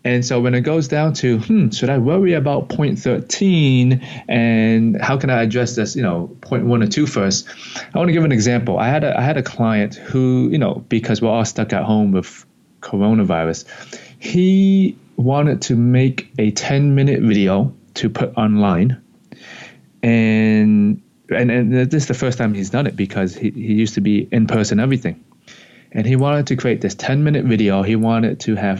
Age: 20-39